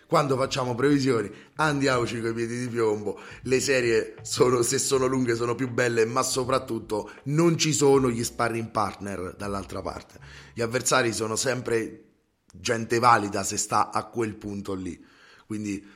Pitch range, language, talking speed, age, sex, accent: 110-145 Hz, Italian, 155 wpm, 30-49, male, native